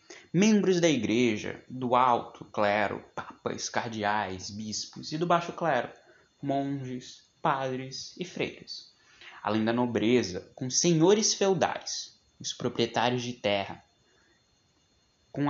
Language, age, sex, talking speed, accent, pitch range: Portuguese, 20-39, male, 110 wpm, Brazilian, 110-180 Hz